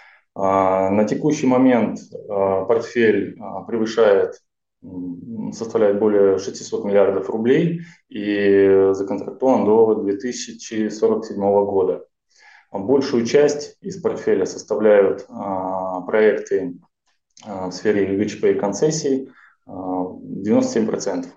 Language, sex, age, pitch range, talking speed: Russian, male, 20-39, 95-130 Hz, 75 wpm